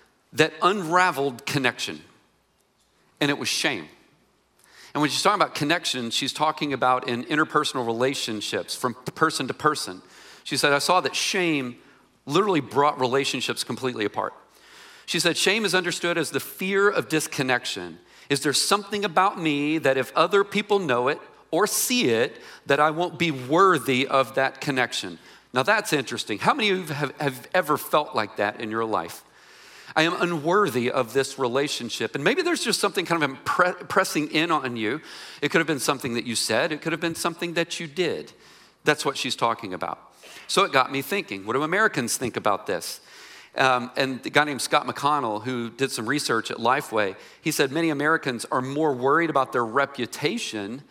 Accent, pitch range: American, 130-170 Hz